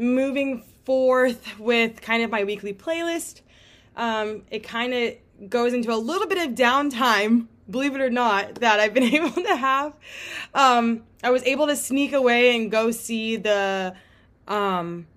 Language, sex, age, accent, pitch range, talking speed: English, female, 20-39, American, 200-245 Hz, 160 wpm